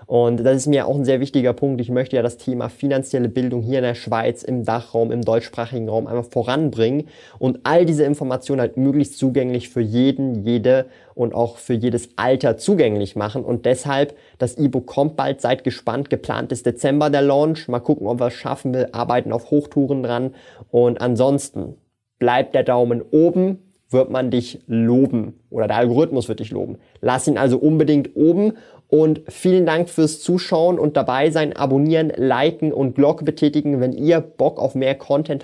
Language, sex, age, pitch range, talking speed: German, male, 20-39, 120-150 Hz, 185 wpm